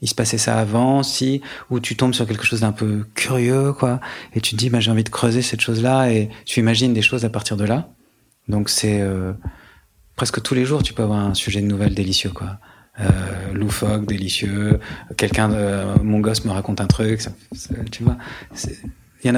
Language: French